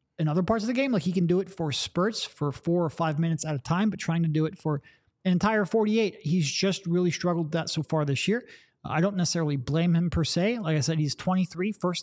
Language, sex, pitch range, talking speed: English, male, 155-195 Hz, 260 wpm